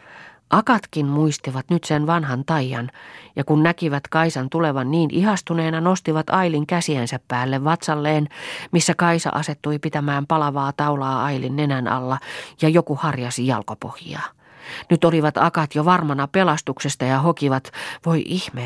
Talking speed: 130 wpm